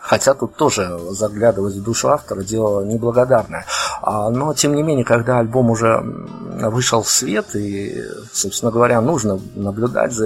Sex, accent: male, native